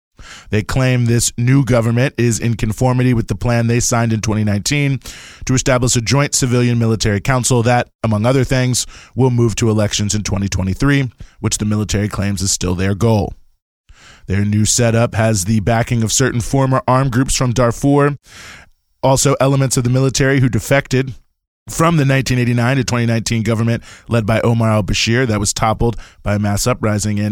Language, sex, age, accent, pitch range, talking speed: English, male, 20-39, American, 105-125 Hz, 170 wpm